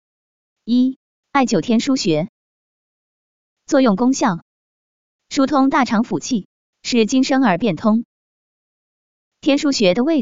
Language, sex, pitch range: Chinese, female, 200-265 Hz